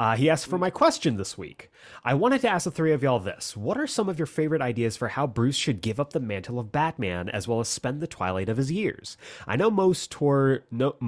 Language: English